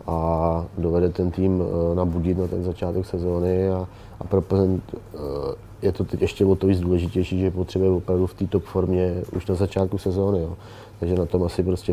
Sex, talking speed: male, 200 wpm